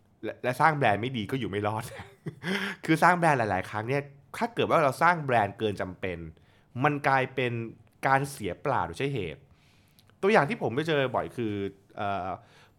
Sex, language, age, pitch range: male, Thai, 20-39, 105-150 Hz